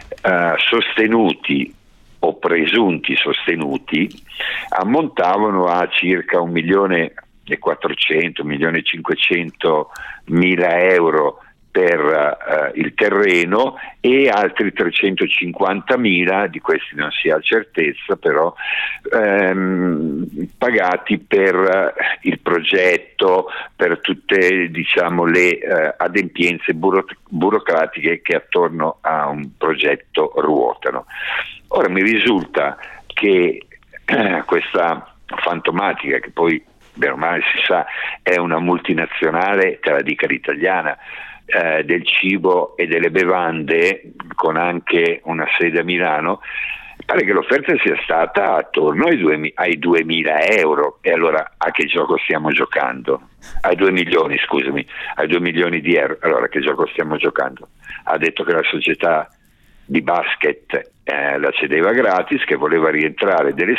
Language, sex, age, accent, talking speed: Italian, male, 50-69, native, 120 wpm